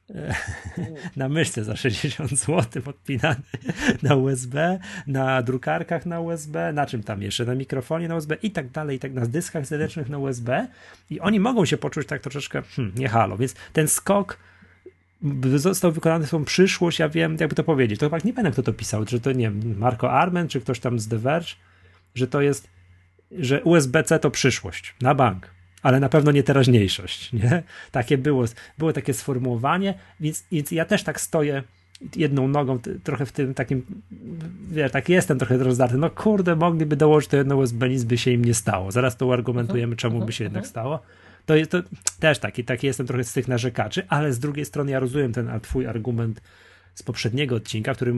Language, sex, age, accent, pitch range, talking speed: Polish, male, 30-49, native, 120-155 Hz, 190 wpm